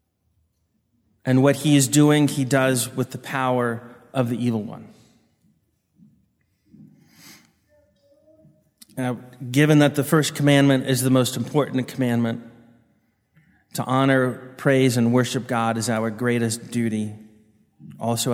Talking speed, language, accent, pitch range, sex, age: 115 wpm, English, American, 120-160 Hz, male, 30-49